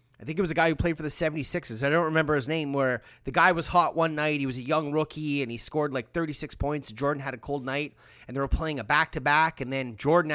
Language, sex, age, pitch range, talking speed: English, male, 30-49, 130-165 Hz, 280 wpm